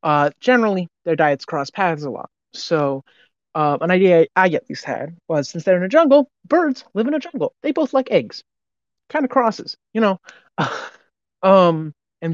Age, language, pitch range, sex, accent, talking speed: 30-49, English, 140-200 Hz, male, American, 190 wpm